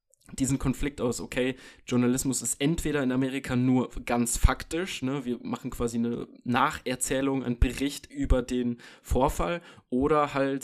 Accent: German